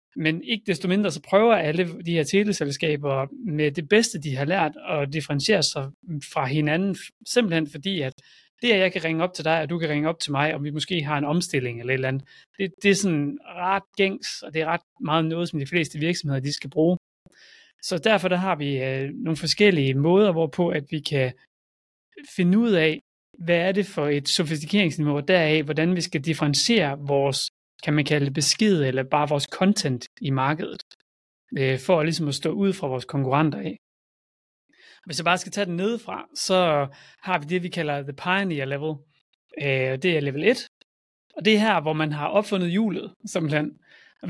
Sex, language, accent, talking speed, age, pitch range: male, Danish, native, 195 wpm, 30-49, 145-190 Hz